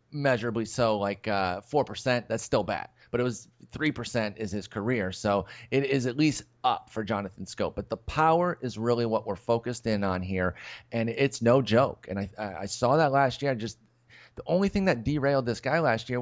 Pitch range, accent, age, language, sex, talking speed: 110-140 Hz, American, 30-49, English, male, 215 wpm